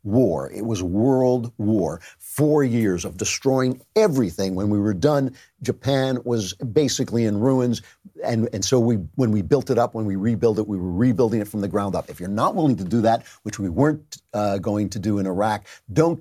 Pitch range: 100-130 Hz